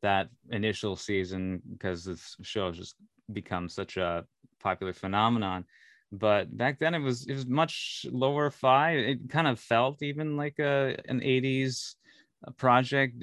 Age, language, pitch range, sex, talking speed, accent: 30-49, English, 95-120 Hz, male, 150 wpm, American